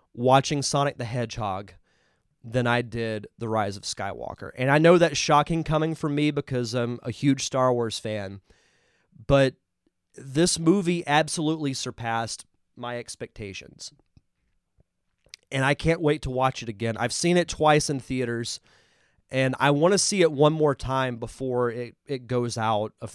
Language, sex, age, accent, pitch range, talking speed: English, male, 30-49, American, 115-145 Hz, 160 wpm